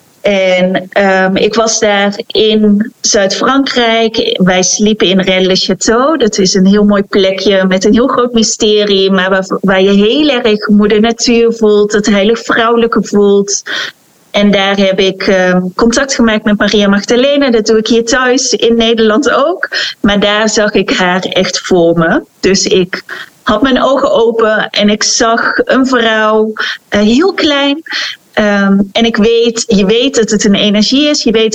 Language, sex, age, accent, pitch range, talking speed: Dutch, female, 30-49, Dutch, 200-230 Hz, 165 wpm